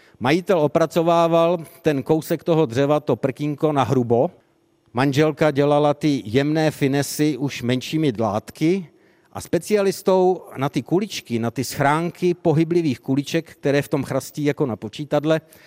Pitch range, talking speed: 130-160 Hz, 135 wpm